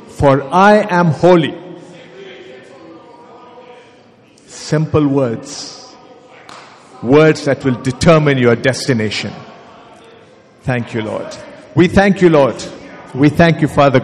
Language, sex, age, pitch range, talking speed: English, male, 50-69, 150-220 Hz, 100 wpm